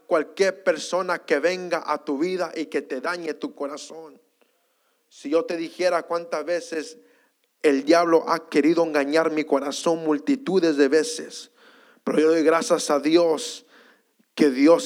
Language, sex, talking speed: English, male, 150 wpm